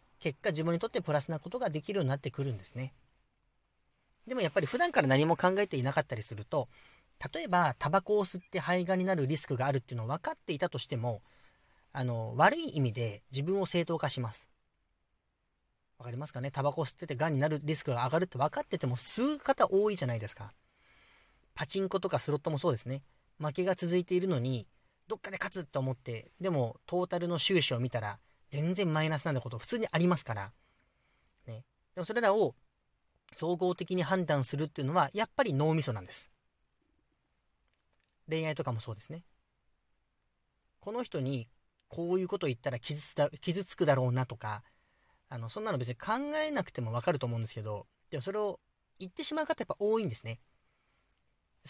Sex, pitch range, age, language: male, 125-180 Hz, 40-59, Japanese